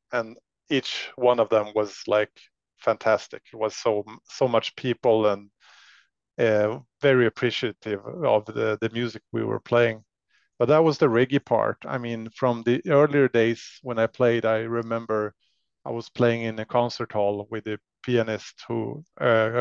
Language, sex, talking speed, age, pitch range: English, male, 165 wpm, 30-49, 110-125 Hz